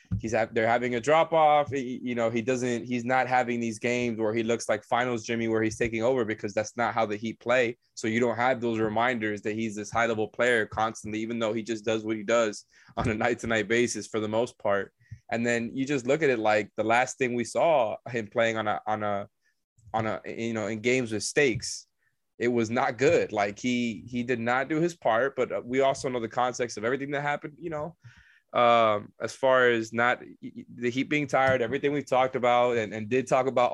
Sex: male